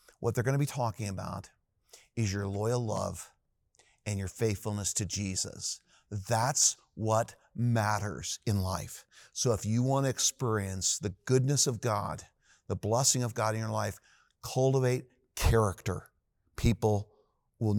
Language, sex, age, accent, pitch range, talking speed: English, male, 50-69, American, 105-130 Hz, 135 wpm